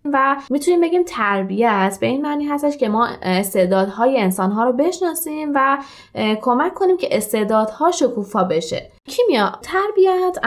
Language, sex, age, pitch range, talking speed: Persian, female, 20-39, 200-290 Hz, 130 wpm